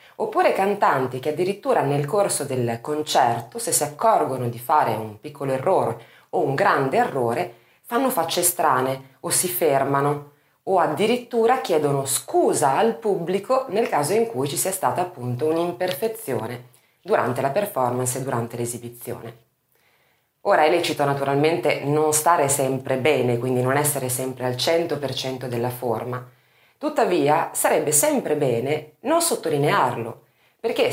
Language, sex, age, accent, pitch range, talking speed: Italian, female, 20-39, native, 130-200 Hz, 135 wpm